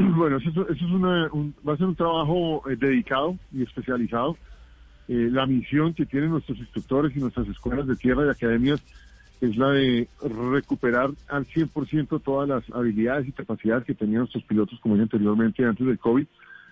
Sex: male